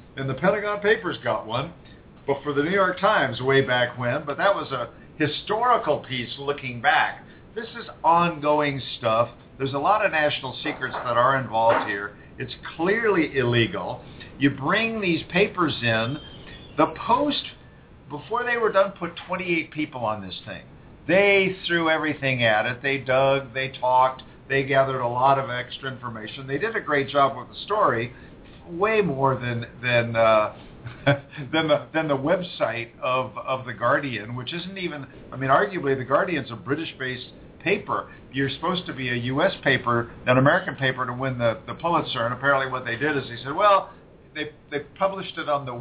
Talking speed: 180 wpm